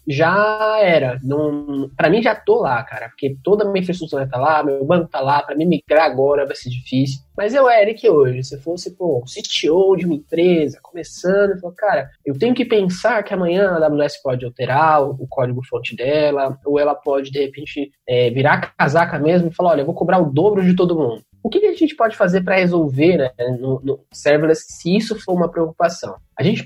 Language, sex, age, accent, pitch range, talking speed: Portuguese, male, 20-39, Brazilian, 145-200 Hz, 225 wpm